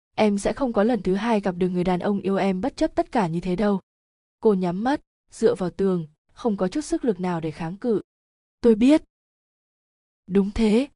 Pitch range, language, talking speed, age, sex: 185-225 Hz, Vietnamese, 220 wpm, 20-39, female